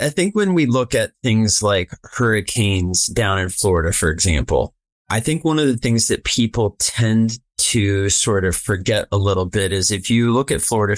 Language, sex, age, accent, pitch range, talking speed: English, male, 30-49, American, 100-115 Hz, 195 wpm